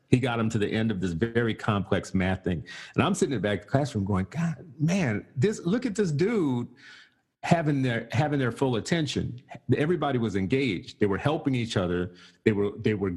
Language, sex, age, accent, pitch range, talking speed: English, male, 40-59, American, 100-135 Hz, 215 wpm